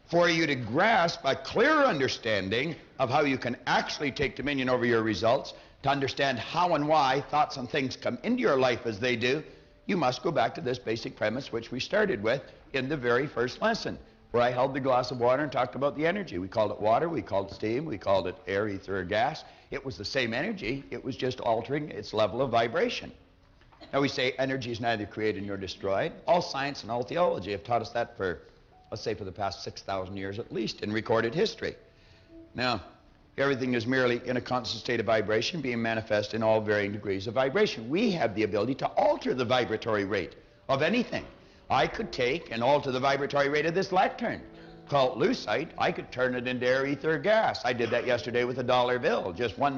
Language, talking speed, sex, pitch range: English, 215 wpm, male, 115-140 Hz